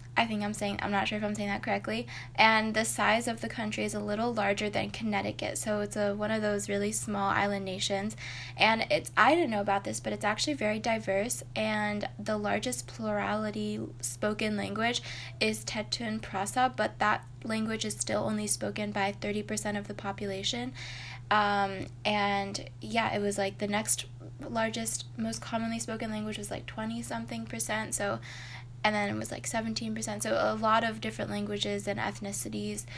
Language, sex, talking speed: English, female, 180 wpm